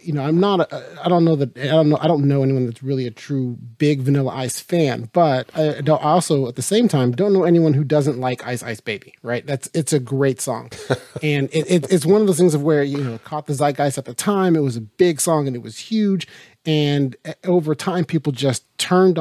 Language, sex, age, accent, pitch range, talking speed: English, male, 30-49, American, 130-160 Hz, 255 wpm